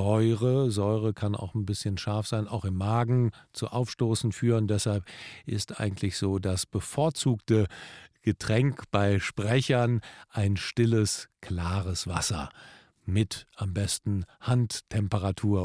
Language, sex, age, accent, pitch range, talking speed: German, male, 50-69, German, 105-140 Hz, 120 wpm